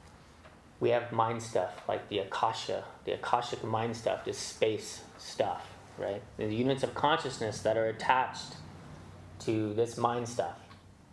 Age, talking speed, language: 30-49, 140 wpm, English